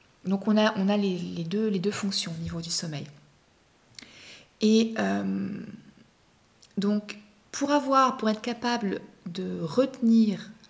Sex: female